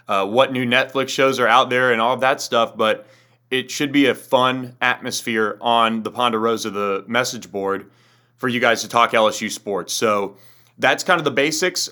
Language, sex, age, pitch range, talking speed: English, male, 30-49, 110-135 Hz, 195 wpm